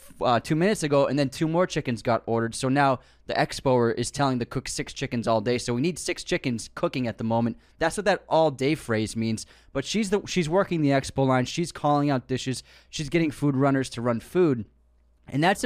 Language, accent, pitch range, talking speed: English, American, 115-150 Hz, 230 wpm